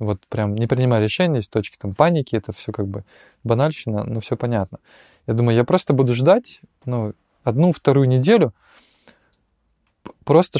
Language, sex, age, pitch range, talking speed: Russian, male, 20-39, 110-145 Hz, 160 wpm